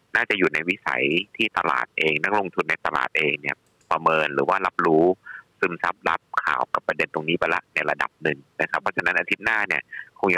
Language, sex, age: Thai, male, 30-49